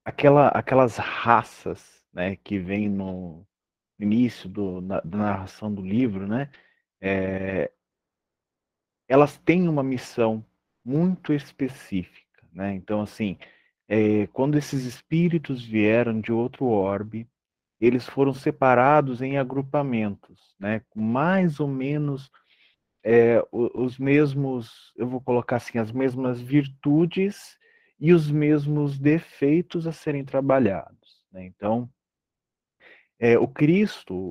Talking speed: 100 wpm